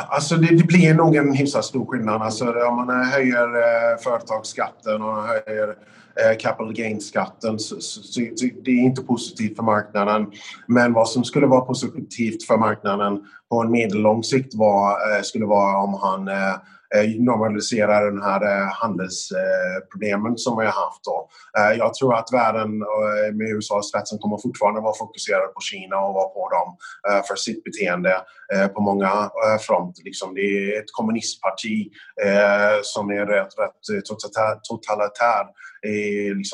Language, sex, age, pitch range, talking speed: Swedish, male, 30-49, 100-120 Hz, 135 wpm